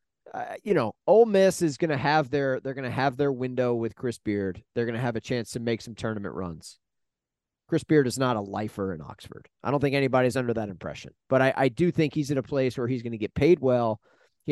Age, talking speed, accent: 40-59, 255 wpm, American